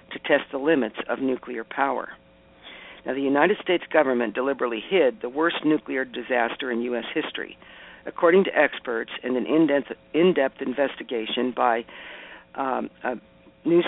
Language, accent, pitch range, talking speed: English, American, 120-145 Hz, 140 wpm